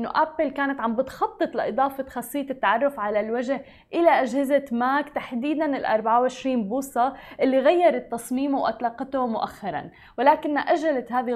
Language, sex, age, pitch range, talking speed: Arabic, female, 20-39, 235-280 Hz, 130 wpm